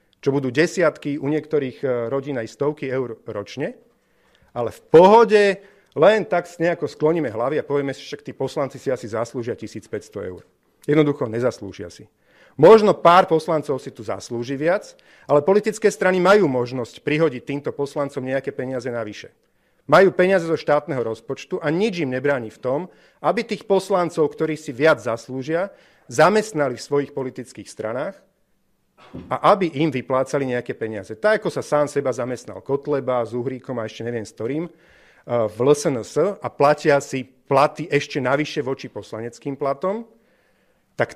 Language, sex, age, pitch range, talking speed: Slovak, male, 40-59, 135-170 Hz, 155 wpm